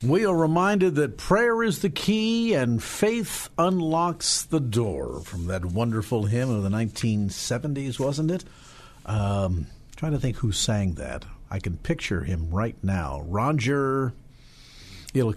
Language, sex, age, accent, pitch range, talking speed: English, male, 50-69, American, 100-150 Hz, 145 wpm